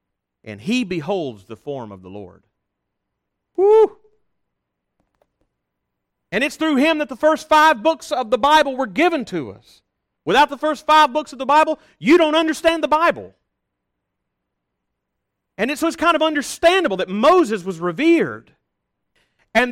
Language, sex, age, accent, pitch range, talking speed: English, male, 40-59, American, 210-315 Hz, 150 wpm